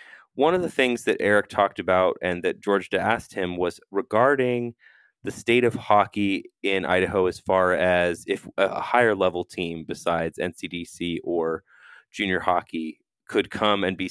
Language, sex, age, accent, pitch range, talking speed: English, male, 20-39, American, 90-120 Hz, 160 wpm